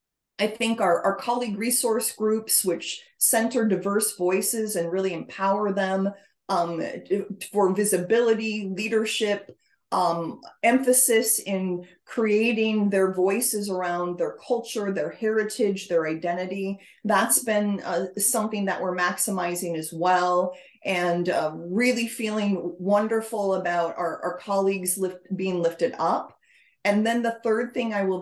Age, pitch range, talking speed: 30-49, 180-220 Hz, 130 wpm